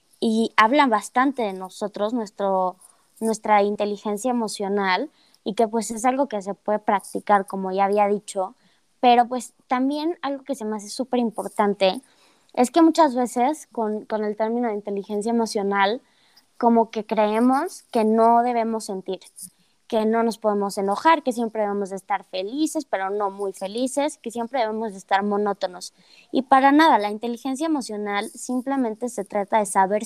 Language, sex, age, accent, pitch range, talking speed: Spanish, female, 20-39, Mexican, 205-250 Hz, 160 wpm